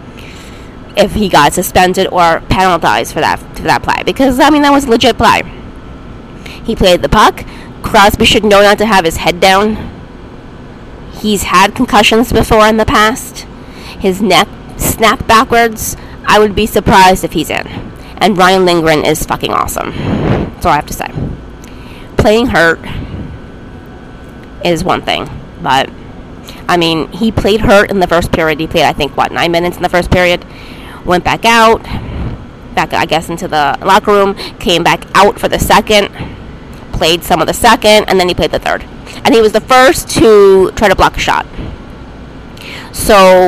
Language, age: English, 20-39